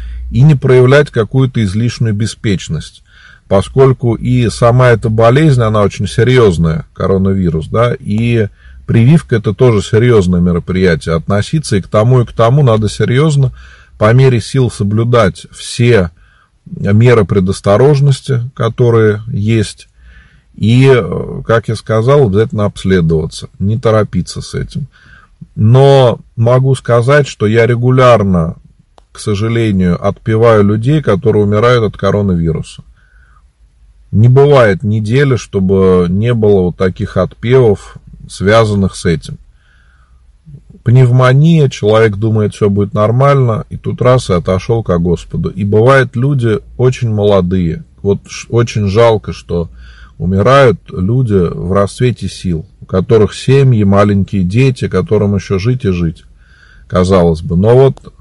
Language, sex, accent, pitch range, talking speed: Russian, male, native, 95-125 Hz, 120 wpm